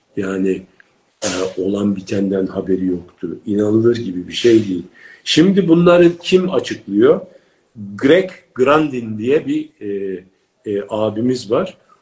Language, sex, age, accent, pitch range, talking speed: Turkish, male, 50-69, native, 95-140 Hz, 115 wpm